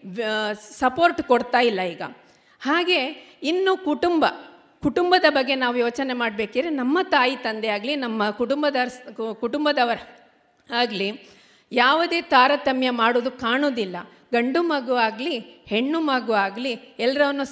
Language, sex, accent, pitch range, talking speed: Kannada, female, native, 220-290 Hz, 105 wpm